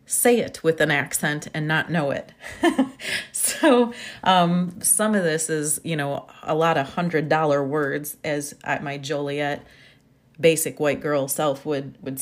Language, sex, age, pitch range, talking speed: English, female, 30-49, 145-165 Hz, 155 wpm